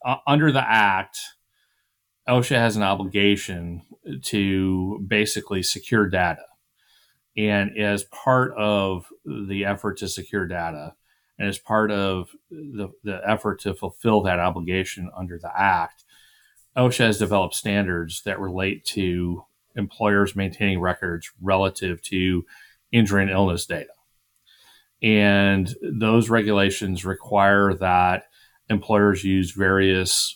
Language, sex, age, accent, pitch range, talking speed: English, male, 30-49, American, 95-105 Hz, 115 wpm